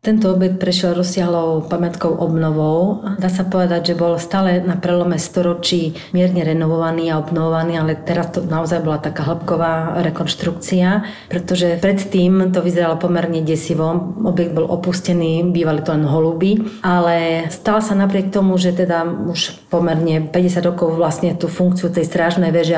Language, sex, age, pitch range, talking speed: Slovak, female, 40-59, 160-180 Hz, 150 wpm